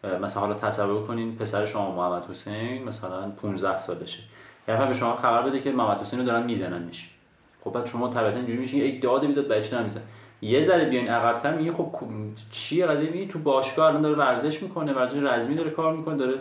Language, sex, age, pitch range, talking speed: Persian, male, 30-49, 105-145 Hz, 205 wpm